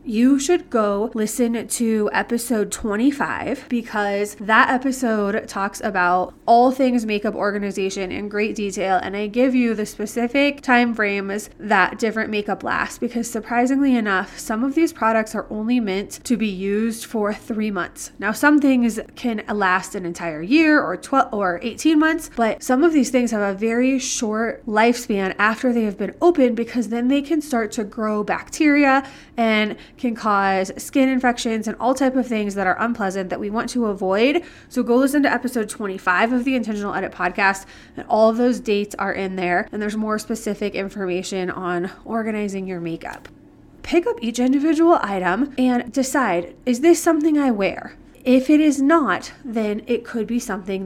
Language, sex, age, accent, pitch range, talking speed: English, female, 20-39, American, 205-255 Hz, 175 wpm